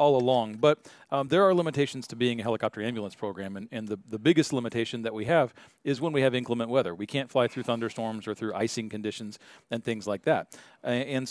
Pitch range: 110-130 Hz